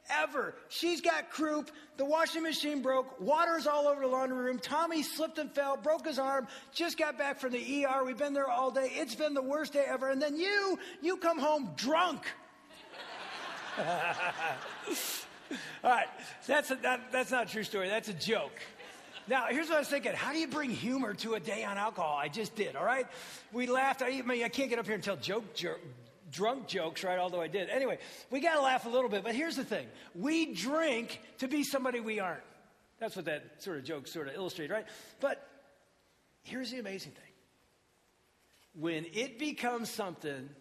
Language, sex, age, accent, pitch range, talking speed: English, male, 40-59, American, 195-295 Hz, 200 wpm